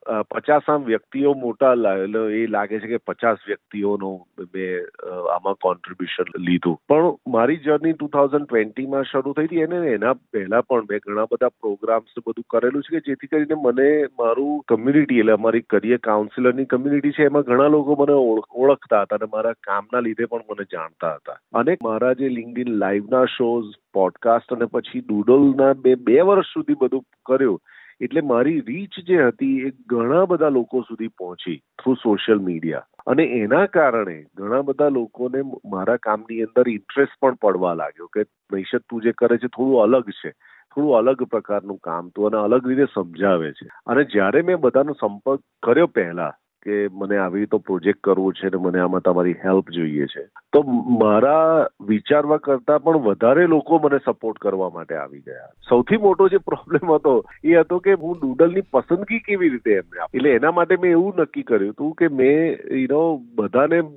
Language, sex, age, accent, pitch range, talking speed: Gujarati, male, 40-59, native, 110-150 Hz, 90 wpm